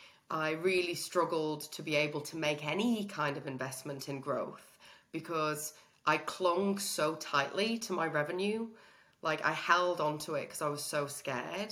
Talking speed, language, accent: 165 wpm, English, British